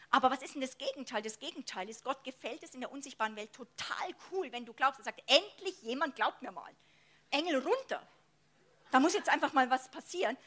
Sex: female